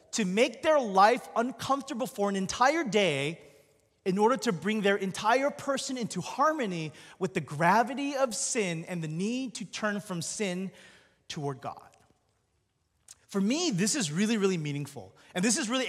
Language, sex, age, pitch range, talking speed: English, male, 20-39, 160-235 Hz, 160 wpm